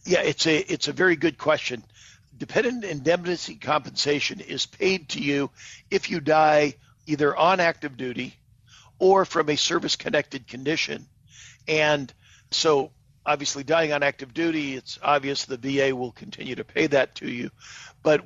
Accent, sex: American, male